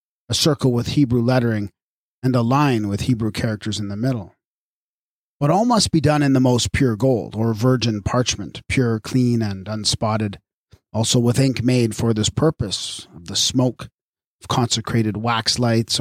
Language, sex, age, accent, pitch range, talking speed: English, male, 40-59, American, 115-140 Hz, 170 wpm